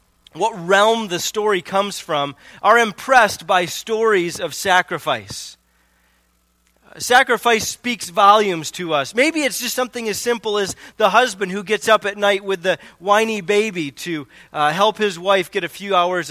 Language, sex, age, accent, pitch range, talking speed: English, male, 30-49, American, 170-215 Hz, 160 wpm